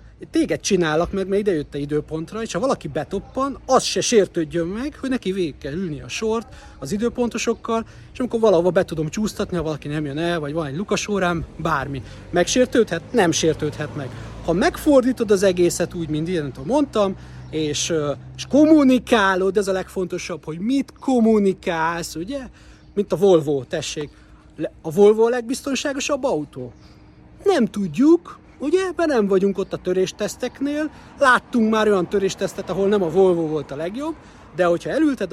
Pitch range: 170-240 Hz